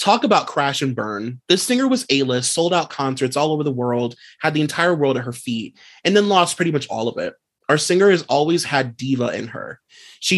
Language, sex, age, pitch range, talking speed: English, male, 30-49, 125-155 Hz, 230 wpm